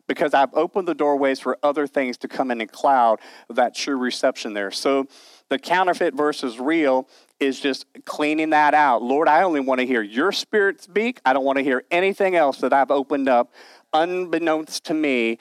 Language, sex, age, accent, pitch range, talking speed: English, male, 40-59, American, 130-160 Hz, 195 wpm